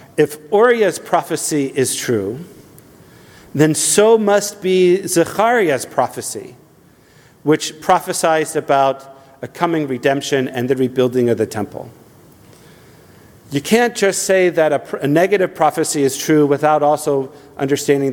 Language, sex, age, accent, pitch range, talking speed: English, male, 50-69, American, 125-155 Hz, 125 wpm